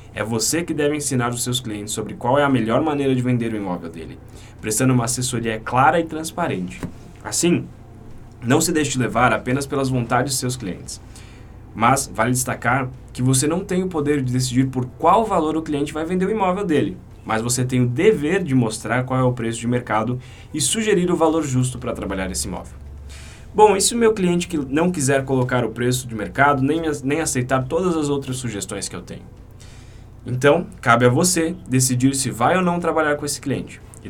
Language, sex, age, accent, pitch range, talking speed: Portuguese, male, 10-29, Brazilian, 110-145 Hz, 205 wpm